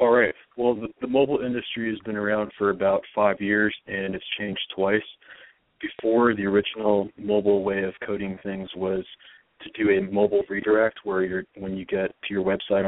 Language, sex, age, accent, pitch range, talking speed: English, male, 30-49, American, 95-110 Hz, 185 wpm